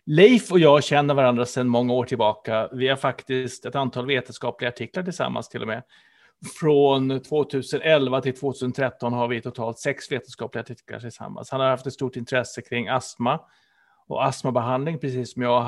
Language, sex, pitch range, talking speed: Swedish, male, 125-160 Hz, 170 wpm